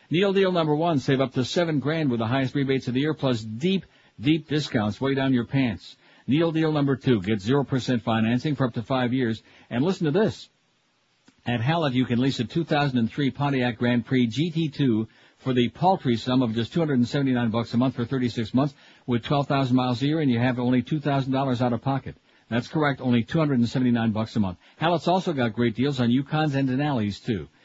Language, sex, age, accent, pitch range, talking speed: English, male, 60-79, American, 120-145 Hz, 210 wpm